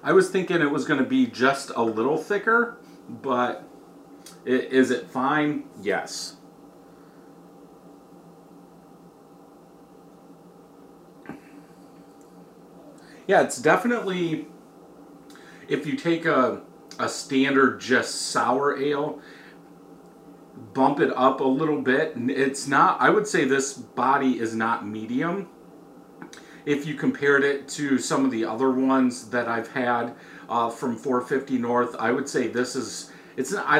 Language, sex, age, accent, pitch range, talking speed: English, male, 40-59, American, 125-150 Hz, 125 wpm